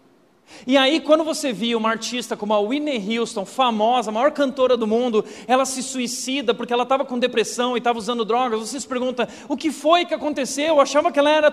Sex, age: male, 40-59